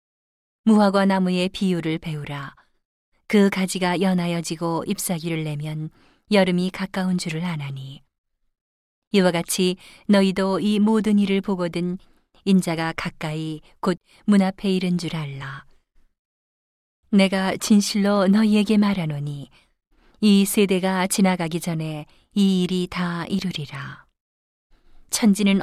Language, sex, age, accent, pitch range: Korean, female, 40-59, native, 165-195 Hz